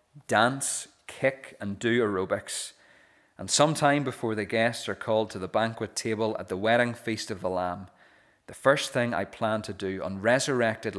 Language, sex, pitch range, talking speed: English, male, 100-125 Hz, 175 wpm